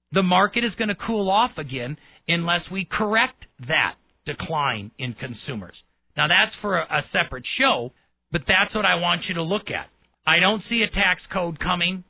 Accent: American